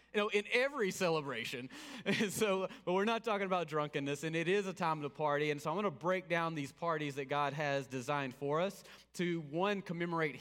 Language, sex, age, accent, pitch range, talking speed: English, male, 30-49, American, 150-205 Hz, 220 wpm